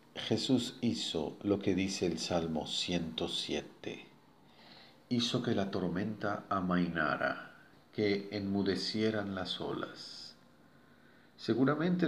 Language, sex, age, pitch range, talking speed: Spanish, male, 50-69, 85-115 Hz, 90 wpm